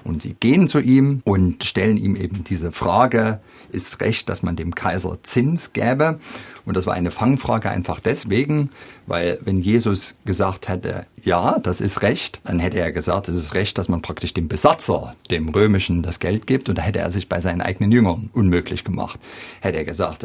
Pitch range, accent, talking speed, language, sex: 90-125 Hz, German, 195 wpm, German, male